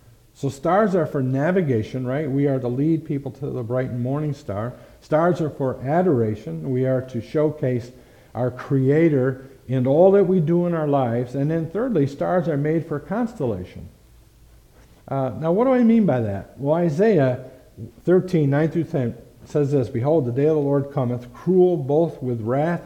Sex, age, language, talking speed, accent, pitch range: male, 50-69, English, 175 wpm, American, 125-160 Hz